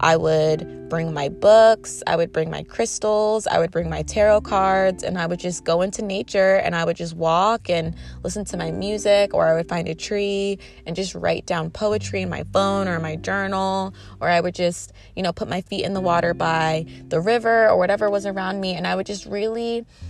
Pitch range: 165-200 Hz